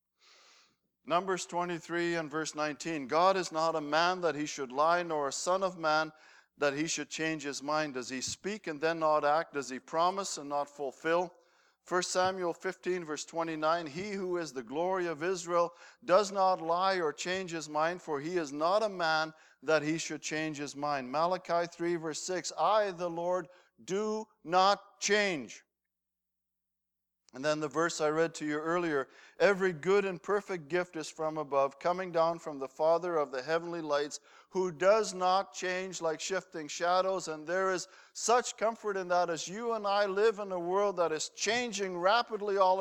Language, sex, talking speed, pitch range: English, male, 185 wpm, 155-190 Hz